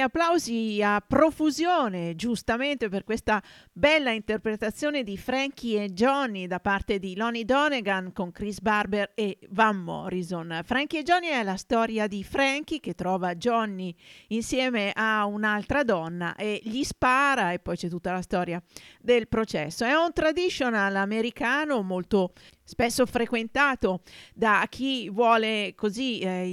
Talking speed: 140 wpm